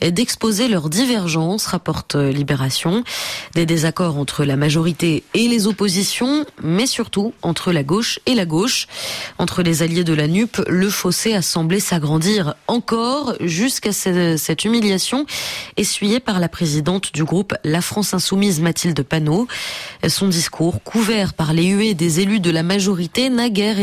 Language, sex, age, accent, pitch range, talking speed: French, female, 20-39, French, 165-215 Hz, 150 wpm